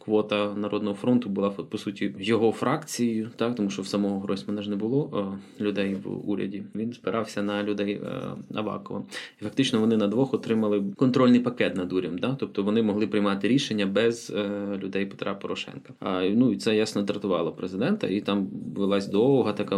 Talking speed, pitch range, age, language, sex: 180 wpm, 100-115 Hz, 20-39, Ukrainian, male